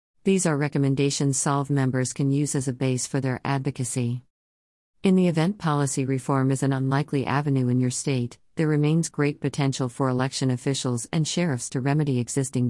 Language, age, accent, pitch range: English, 50-69, American, 130-155 Hz